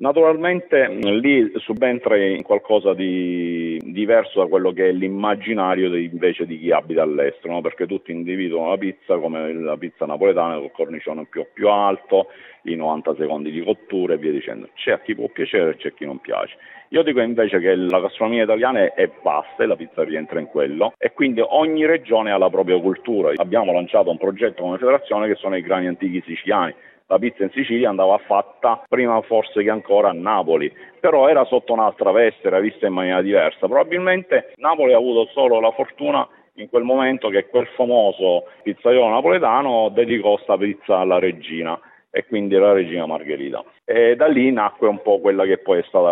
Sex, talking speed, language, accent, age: male, 190 wpm, Italian, native, 50-69